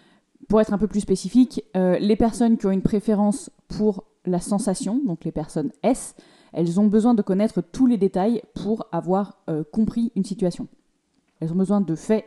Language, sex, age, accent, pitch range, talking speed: French, female, 20-39, French, 185-235 Hz, 190 wpm